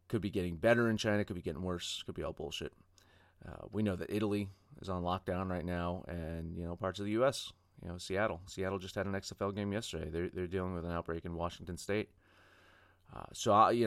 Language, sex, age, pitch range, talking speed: English, male, 30-49, 90-105 Hz, 235 wpm